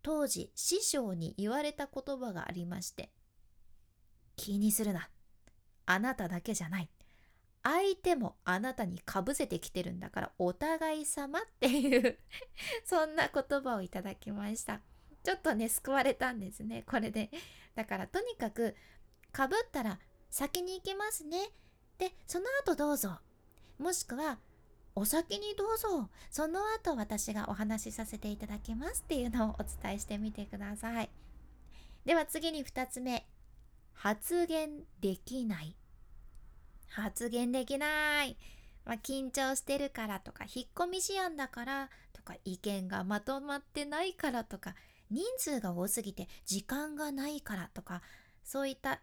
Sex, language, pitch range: female, Japanese, 200-305 Hz